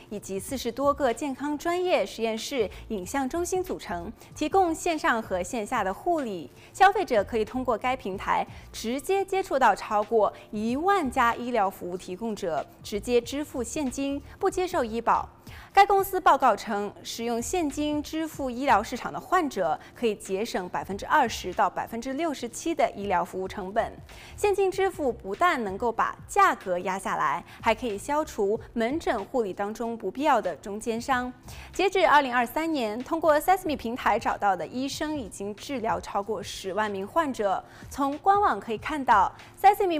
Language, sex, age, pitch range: Chinese, female, 20-39, 220-320 Hz